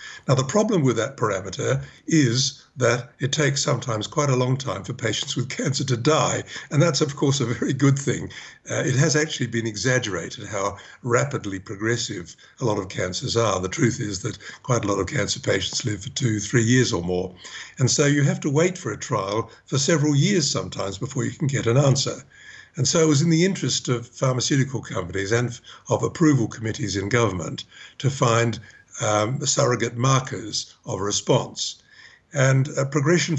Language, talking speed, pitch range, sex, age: English, 190 wpm, 115-150 Hz, male, 60-79